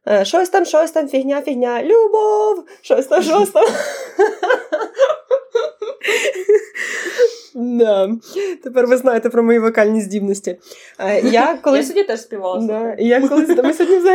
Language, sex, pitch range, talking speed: Ukrainian, female, 200-315 Hz, 100 wpm